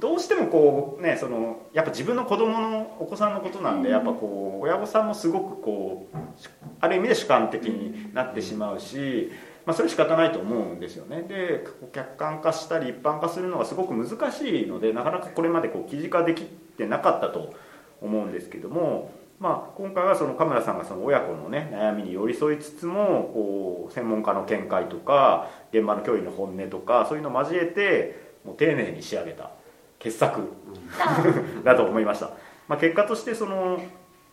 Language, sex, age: Japanese, male, 40-59